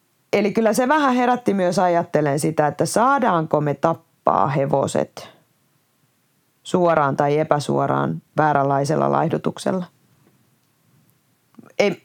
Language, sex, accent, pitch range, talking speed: Finnish, female, native, 145-170 Hz, 95 wpm